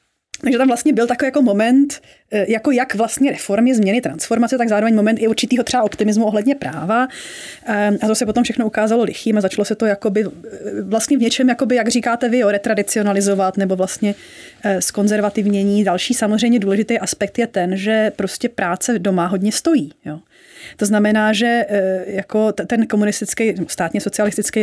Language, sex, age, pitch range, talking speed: Czech, female, 30-49, 195-235 Hz, 165 wpm